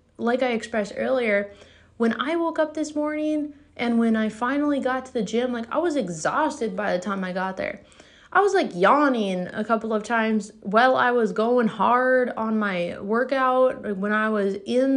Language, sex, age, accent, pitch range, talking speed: English, female, 20-39, American, 205-255 Hz, 195 wpm